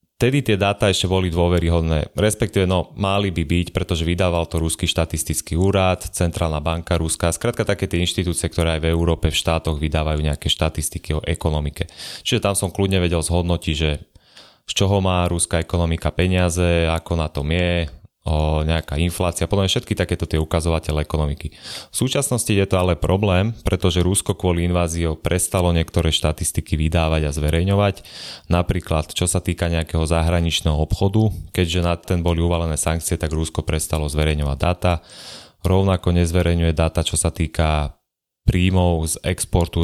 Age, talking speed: 30-49, 155 wpm